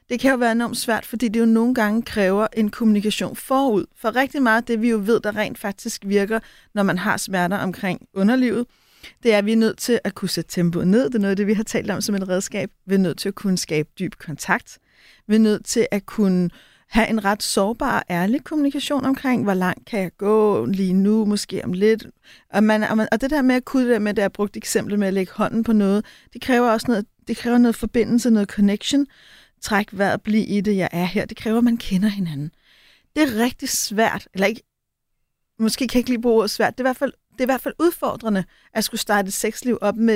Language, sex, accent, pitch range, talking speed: Danish, female, native, 200-235 Hz, 245 wpm